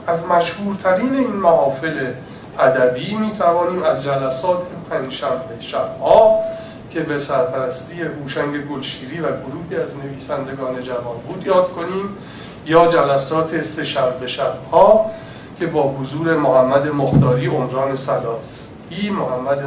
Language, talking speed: Persian, 120 wpm